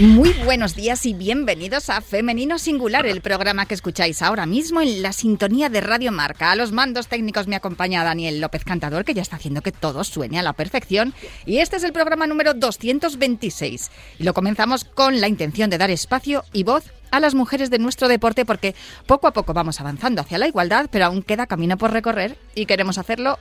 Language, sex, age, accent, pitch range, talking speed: Spanish, female, 30-49, Spanish, 185-250 Hz, 210 wpm